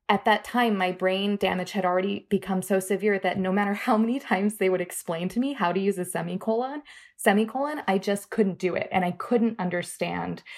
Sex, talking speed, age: female, 210 wpm, 20-39